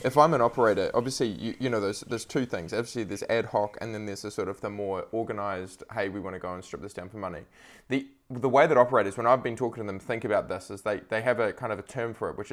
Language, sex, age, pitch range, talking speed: English, male, 20-39, 100-120 Hz, 300 wpm